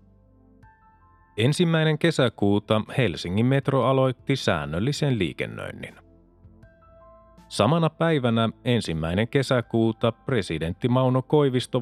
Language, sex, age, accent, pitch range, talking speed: Finnish, male, 30-49, native, 110-130 Hz, 70 wpm